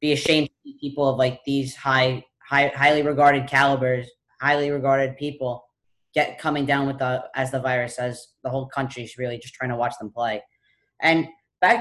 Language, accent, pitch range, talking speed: English, American, 130-160 Hz, 195 wpm